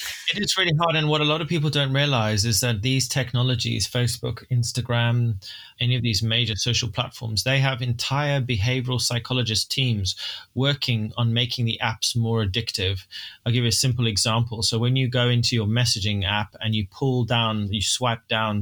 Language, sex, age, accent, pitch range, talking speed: English, male, 20-39, British, 110-130 Hz, 185 wpm